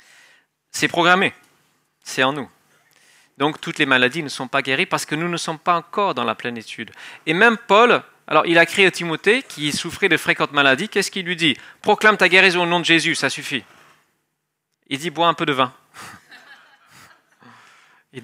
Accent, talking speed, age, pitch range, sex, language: French, 195 wpm, 40-59, 140-185 Hz, male, French